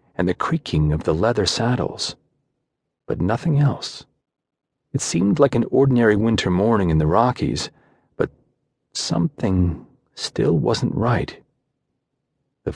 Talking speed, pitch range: 120 wpm, 95-140 Hz